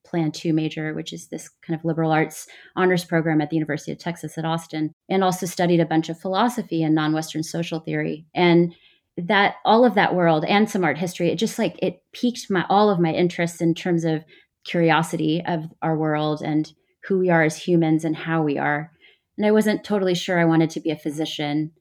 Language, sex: English, female